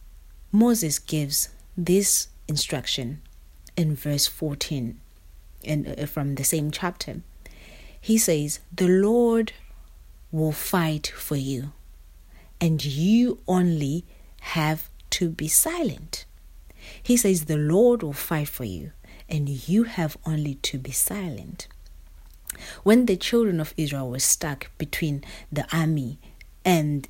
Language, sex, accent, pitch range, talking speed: English, female, South African, 130-175 Hz, 115 wpm